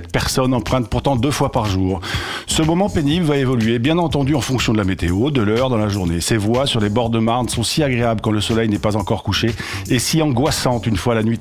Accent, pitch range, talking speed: French, 110-140 Hz, 250 wpm